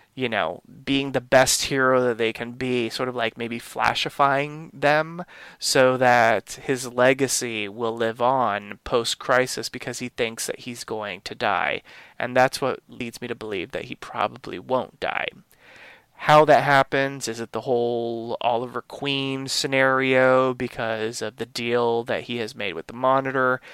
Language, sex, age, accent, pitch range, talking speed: English, male, 20-39, American, 120-135 Hz, 165 wpm